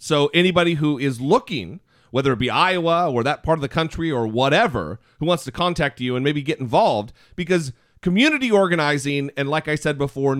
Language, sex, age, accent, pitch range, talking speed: English, male, 40-59, American, 125-175 Hz, 195 wpm